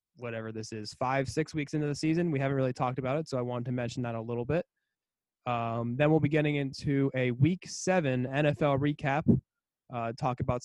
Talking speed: 215 wpm